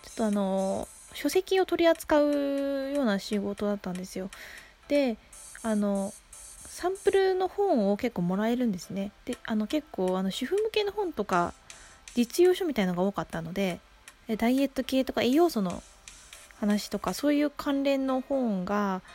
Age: 20-39